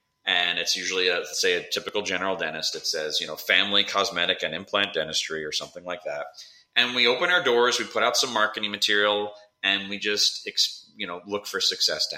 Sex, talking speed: male, 205 wpm